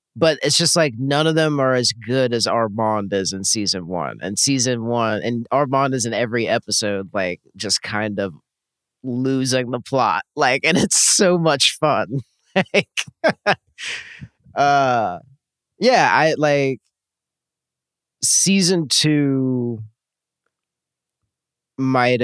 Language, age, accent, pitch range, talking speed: English, 30-49, American, 105-130 Hz, 130 wpm